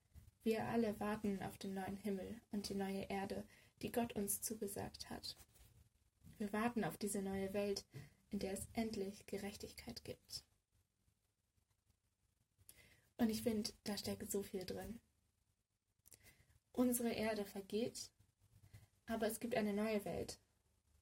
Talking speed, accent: 130 wpm, German